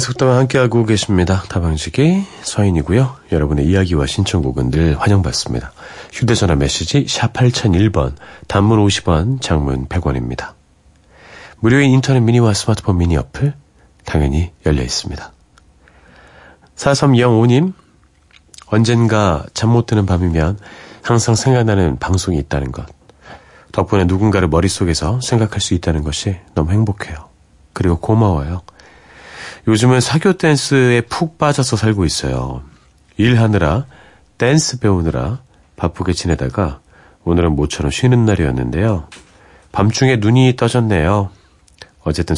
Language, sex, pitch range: Korean, male, 80-120 Hz